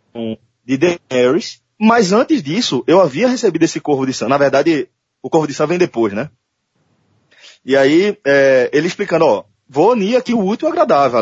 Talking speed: 180 wpm